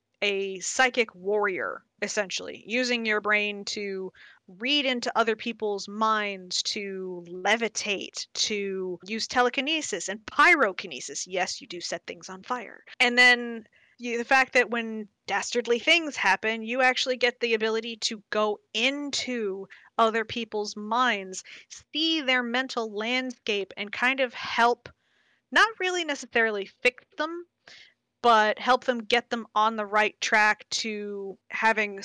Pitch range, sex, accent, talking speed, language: 205-250 Hz, female, American, 135 wpm, English